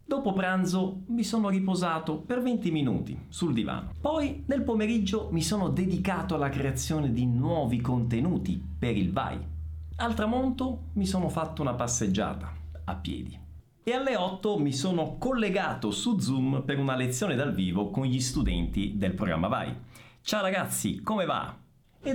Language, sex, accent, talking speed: Italian, male, native, 155 wpm